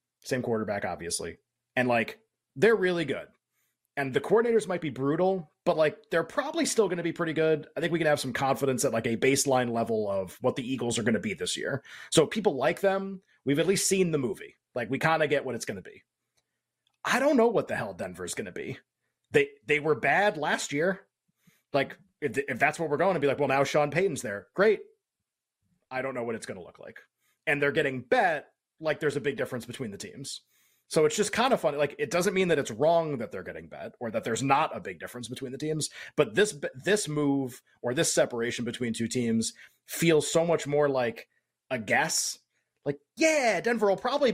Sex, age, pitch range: male, 30-49, 135-195 Hz